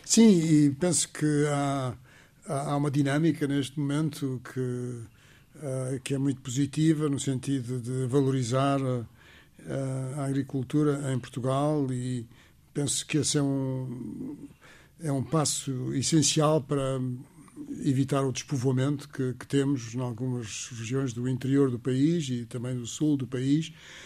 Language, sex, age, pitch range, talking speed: Portuguese, male, 60-79, 130-150 Hz, 135 wpm